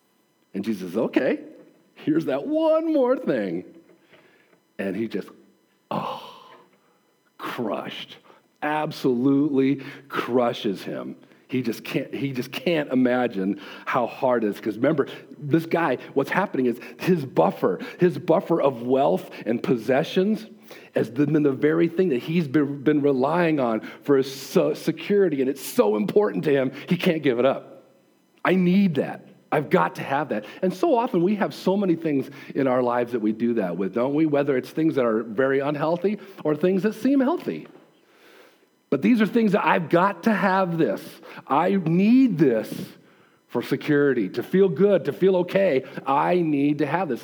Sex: male